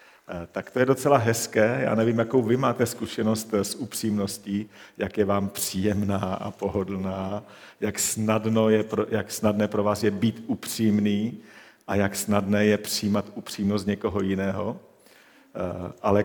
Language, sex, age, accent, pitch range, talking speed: Czech, male, 50-69, native, 100-120 Hz, 135 wpm